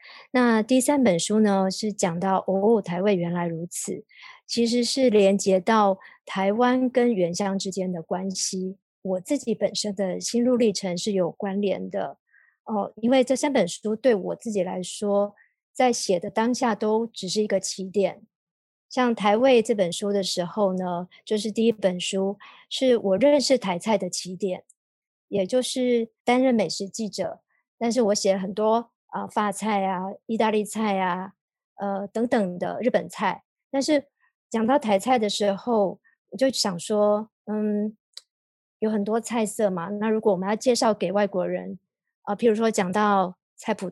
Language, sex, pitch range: Chinese, male, 190-235 Hz